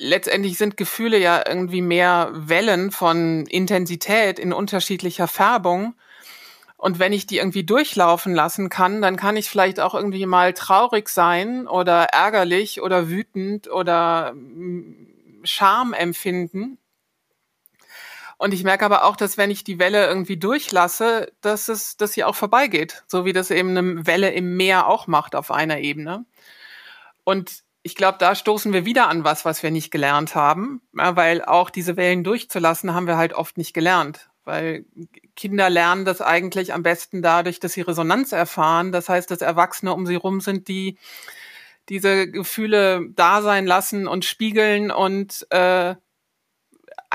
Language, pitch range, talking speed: German, 175-205 Hz, 155 wpm